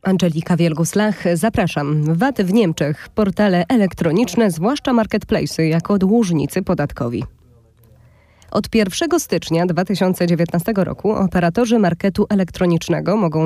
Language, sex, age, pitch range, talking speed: Polish, female, 20-39, 165-210 Hz, 100 wpm